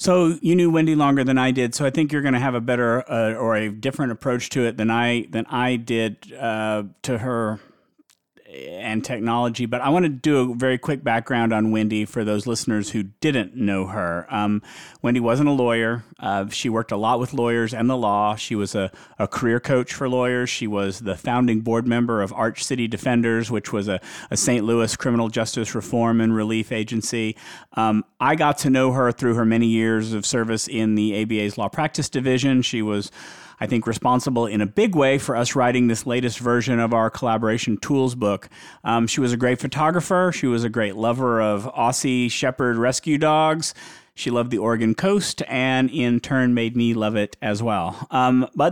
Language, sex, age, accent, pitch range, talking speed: English, male, 40-59, American, 110-135 Hz, 205 wpm